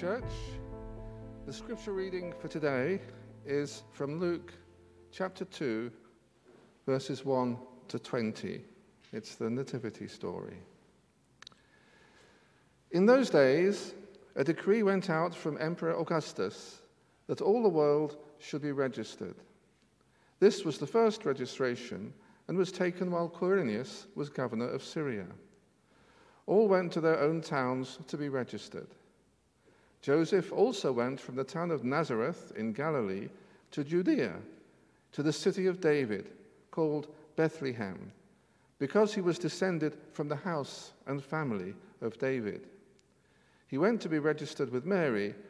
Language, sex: English, male